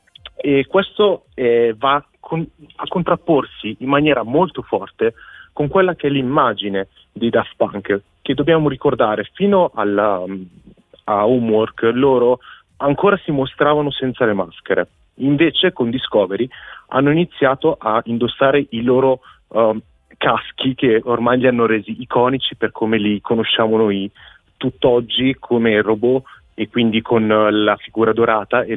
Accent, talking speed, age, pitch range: native, 135 wpm, 30-49, 105-140 Hz